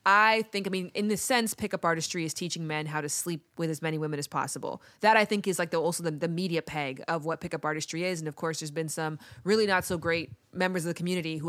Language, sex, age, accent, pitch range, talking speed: English, female, 20-39, American, 155-185 Hz, 260 wpm